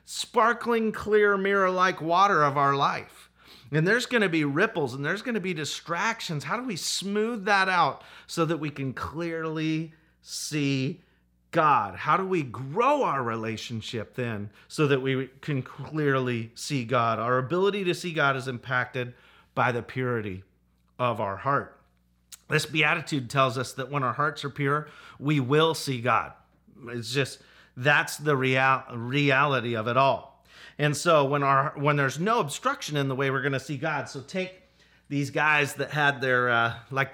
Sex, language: male, English